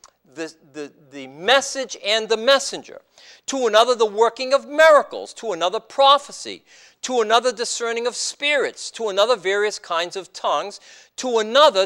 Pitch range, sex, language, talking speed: 200-275 Hz, male, English, 145 wpm